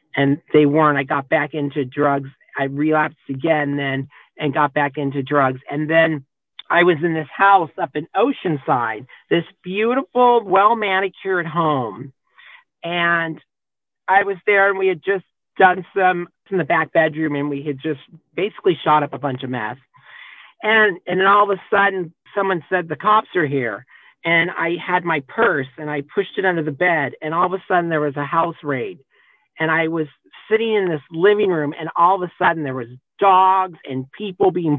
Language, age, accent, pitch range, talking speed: English, 50-69, American, 150-195 Hz, 190 wpm